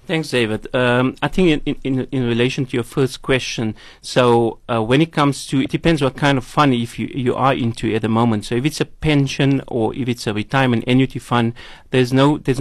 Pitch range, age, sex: 115-140 Hz, 30-49, male